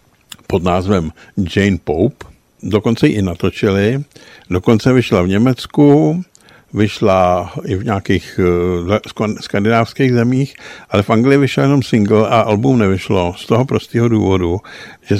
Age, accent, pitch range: 60-79, native, 90-110 Hz